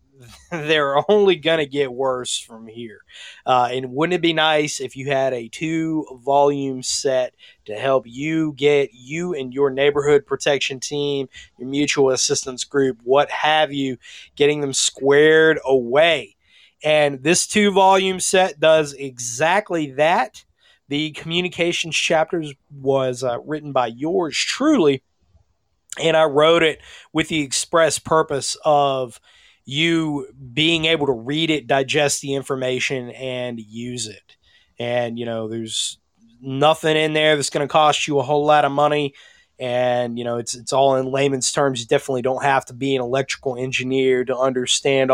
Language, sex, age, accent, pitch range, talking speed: English, male, 30-49, American, 130-155 Hz, 155 wpm